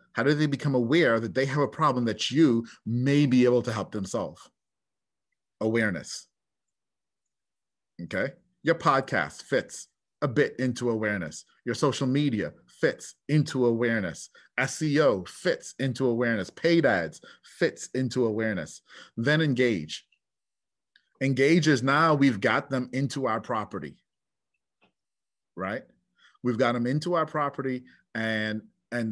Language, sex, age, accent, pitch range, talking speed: English, male, 30-49, American, 115-140 Hz, 130 wpm